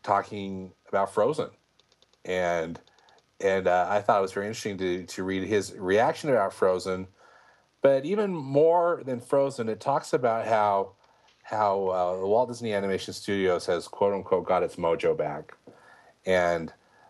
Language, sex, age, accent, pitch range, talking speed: English, male, 40-59, American, 85-110 Hz, 150 wpm